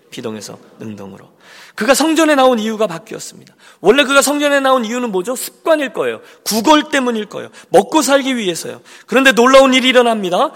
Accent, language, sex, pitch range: native, Korean, male, 180-270 Hz